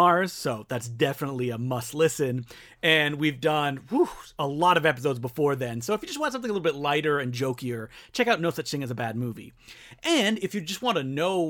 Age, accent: 30-49, American